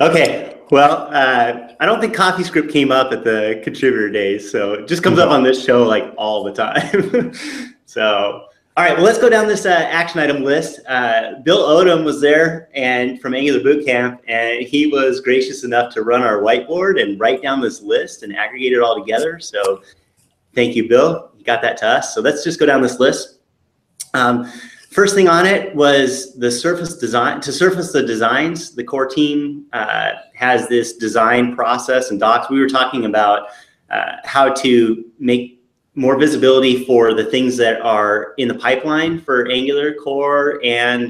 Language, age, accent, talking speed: English, 30-49, American, 185 wpm